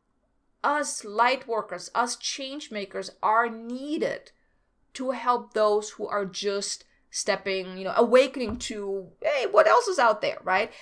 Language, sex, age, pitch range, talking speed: English, female, 30-49, 200-265 Hz, 145 wpm